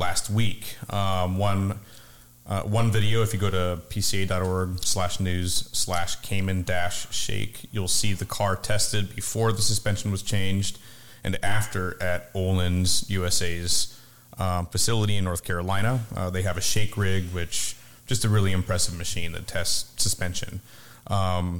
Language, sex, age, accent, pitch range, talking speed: English, male, 30-49, American, 90-105 Hz, 135 wpm